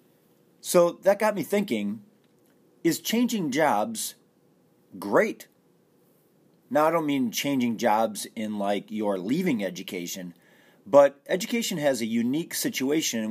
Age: 40-59